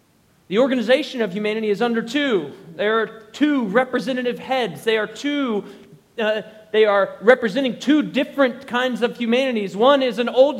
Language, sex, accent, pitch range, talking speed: English, male, American, 185-250 Hz, 160 wpm